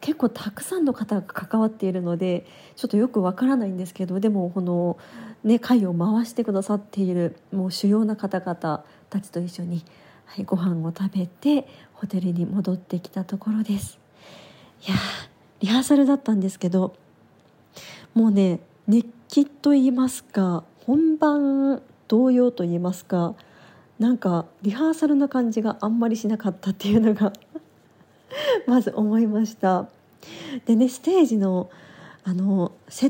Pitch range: 180-235 Hz